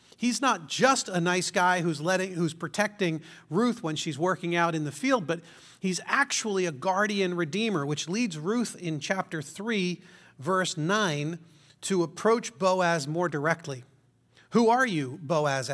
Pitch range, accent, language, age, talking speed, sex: 155-200 Hz, American, English, 40-59, 155 wpm, male